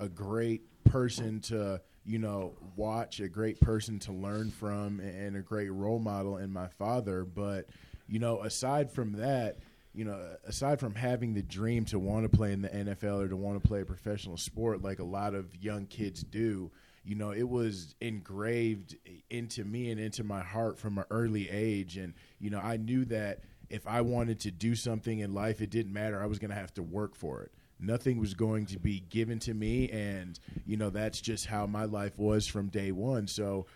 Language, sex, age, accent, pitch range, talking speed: English, male, 20-39, American, 100-115 Hz, 210 wpm